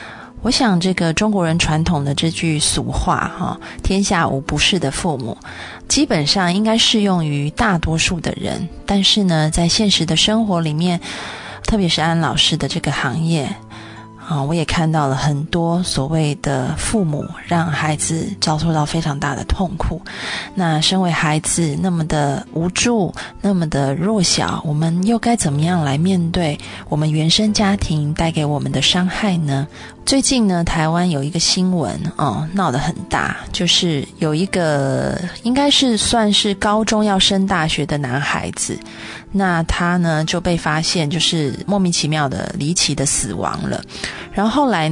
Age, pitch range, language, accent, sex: 20-39, 150-190 Hz, Chinese, native, female